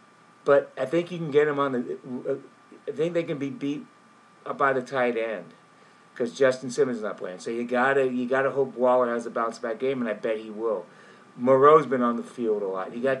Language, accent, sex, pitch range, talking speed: English, American, male, 130-170 Hz, 240 wpm